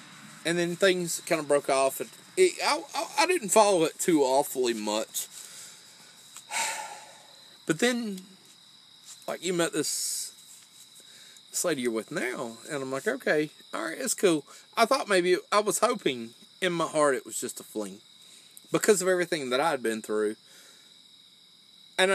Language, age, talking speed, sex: English, 30-49, 155 wpm, male